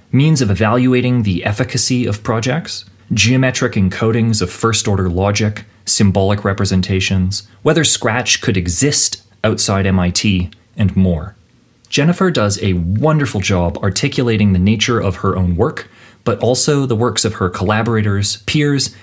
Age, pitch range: 30-49, 95-125 Hz